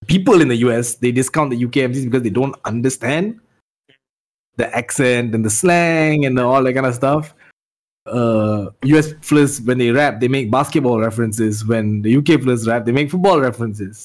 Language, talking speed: English, 185 wpm